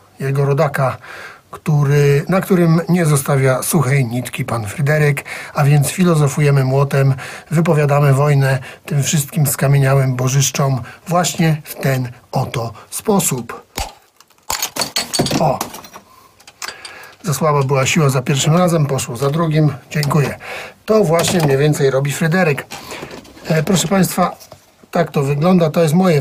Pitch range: 135-165 Hz